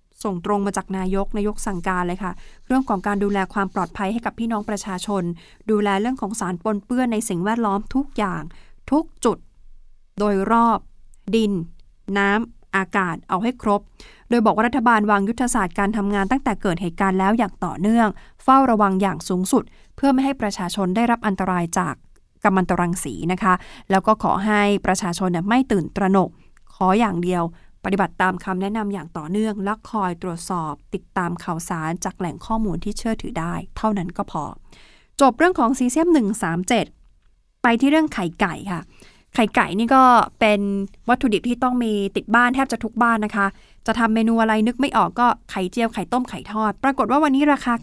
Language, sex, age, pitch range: Thai, female, 20-39, 190-235 Hz